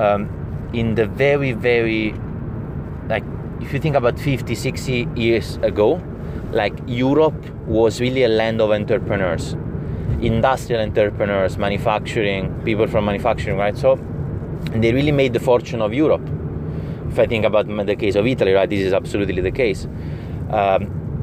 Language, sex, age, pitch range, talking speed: English, male, 30-49, 100-125 Hz, 145 wpm